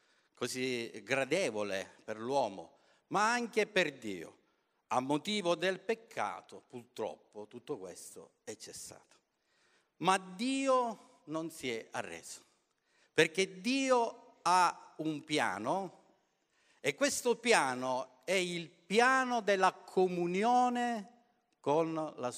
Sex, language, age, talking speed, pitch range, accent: male, Italian, 50-69, 100 wpm, 115-190 Hz, native